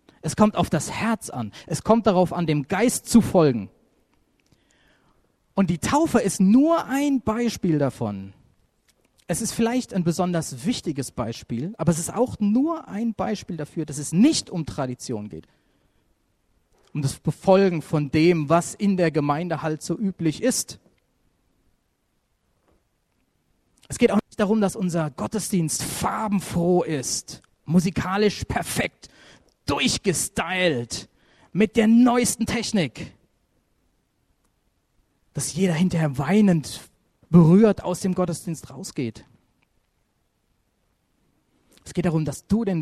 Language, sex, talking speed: German, male, 125 wpm